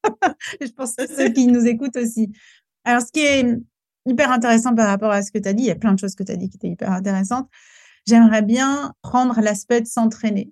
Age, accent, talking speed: 30-49, French, 240 wpm